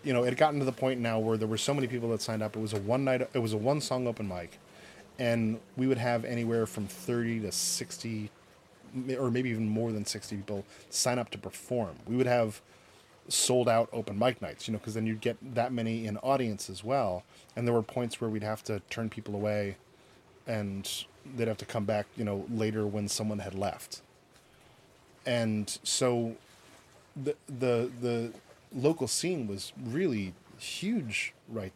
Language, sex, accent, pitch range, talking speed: English, male, American, 105-130 Hz, 195 wpm